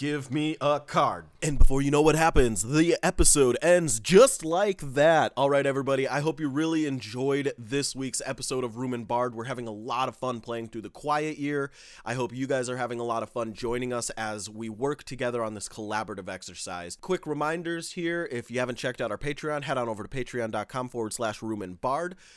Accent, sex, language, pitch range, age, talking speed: American, male, English, 115-160 Hz, 30-49, 220 wpm